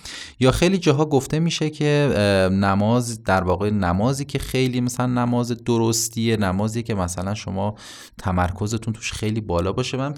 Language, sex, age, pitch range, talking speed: Persian, male, 30-49, 90-120 Hz, 145 wpm